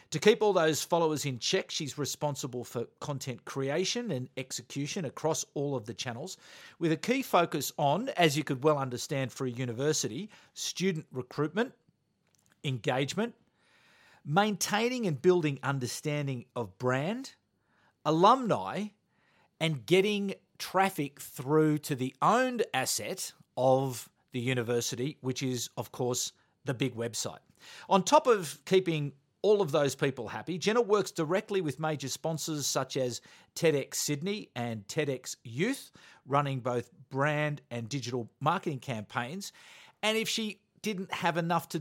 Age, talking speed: 40-59, 140 wpm